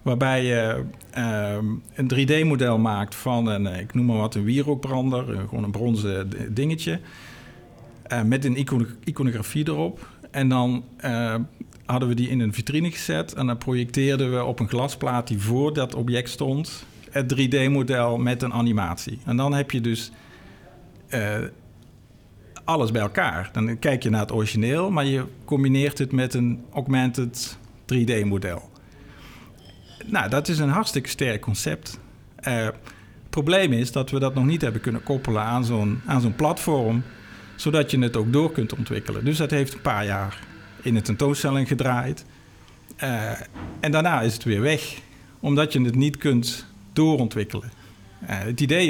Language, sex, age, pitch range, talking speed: Dutch, male, 50-69, 110-140 Hz, 155 wpm